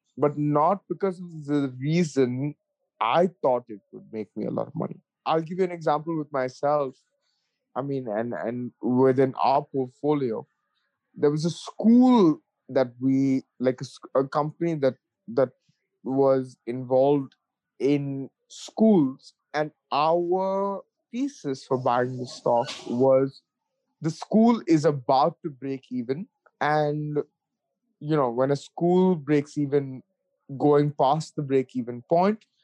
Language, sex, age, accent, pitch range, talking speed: English, male, 20-39, Indian, 130-175 Hz, 140 wpm